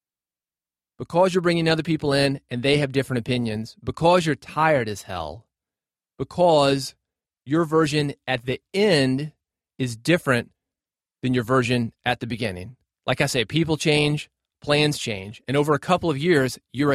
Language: English